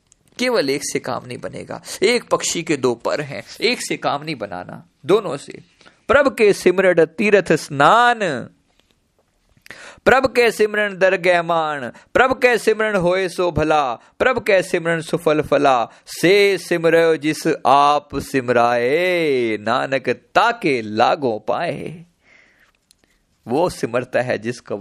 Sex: male